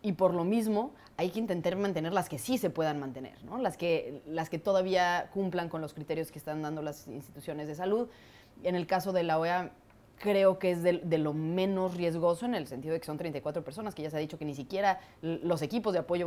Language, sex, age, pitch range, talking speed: Spanish, female, 20-39, 155-190 Hz, 240 wpm